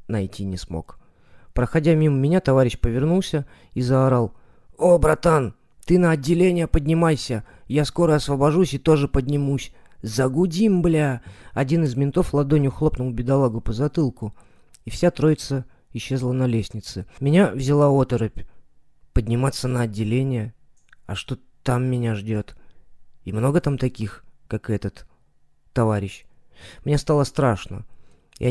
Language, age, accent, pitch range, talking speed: Russian, 30-49, native, 115-150 Hz, 125 wpm